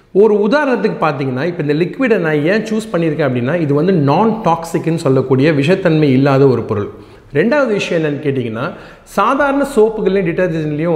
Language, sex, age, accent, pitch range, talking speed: Tamil, male, 40-59, native, 140-195 Hz, 150 wpm